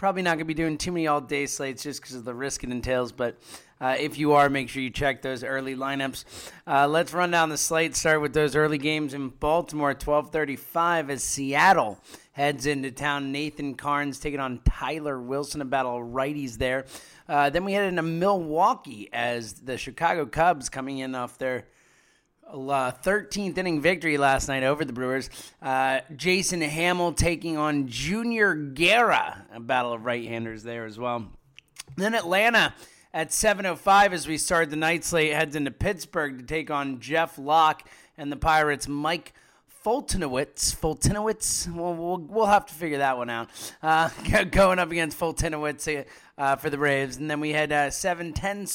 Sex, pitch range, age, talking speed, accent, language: male, 135-165 Hz, 30-49, 175 wpm, American, English